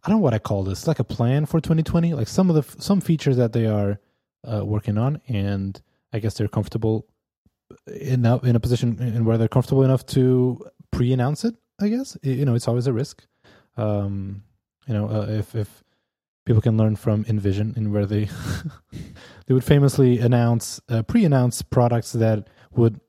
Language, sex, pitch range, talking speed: English, male, 105-130 Hz, 200 wpm